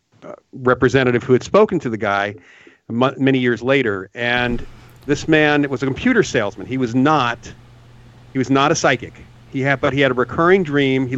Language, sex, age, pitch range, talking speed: English, male, 40-59, 120-140 Hz, 195 wpm